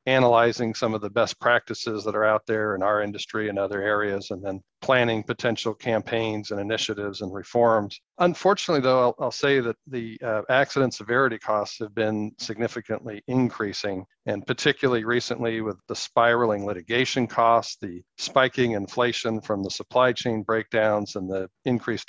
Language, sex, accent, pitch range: English, male, American, 105-120 Hz